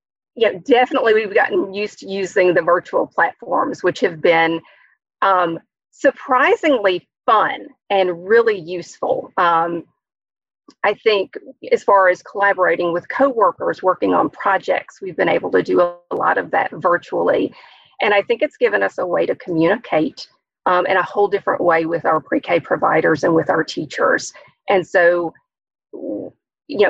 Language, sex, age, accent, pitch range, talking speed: English, female, 40-59, American, 180-230 Hz, 150 wpm